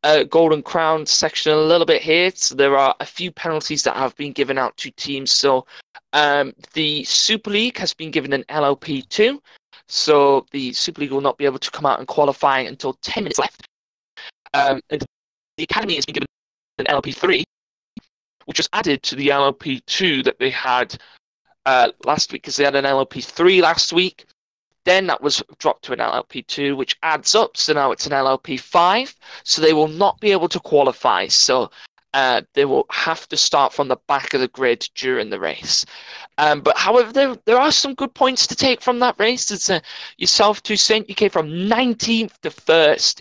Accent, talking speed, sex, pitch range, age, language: British, 195 wpm, male, 140-225 Hz, 20-39, English